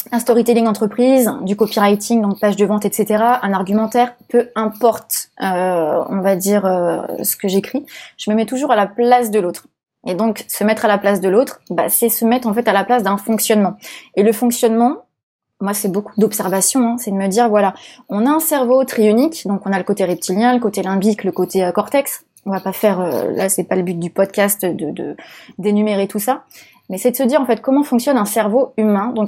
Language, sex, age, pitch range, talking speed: French, female, 20-39, 200-245 Hz, 230 wpm